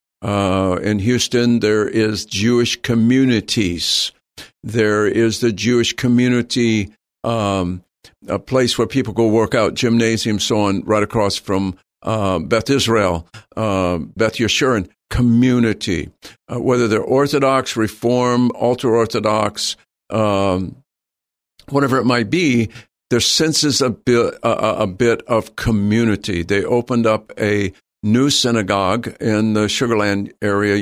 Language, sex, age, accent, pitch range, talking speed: English, male, 60-79, American, 100-120 Hz, 125 wpm